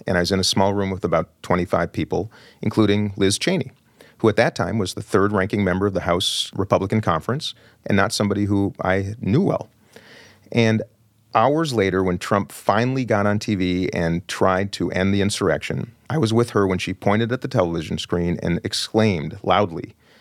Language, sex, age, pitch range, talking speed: English, male, 40-59, 90-110 Hz, 190 wpm